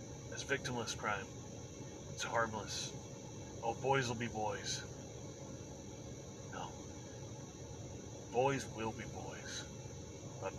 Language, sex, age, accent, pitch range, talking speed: English, male, 30-49, American, 115-135 Hz, 90 wpm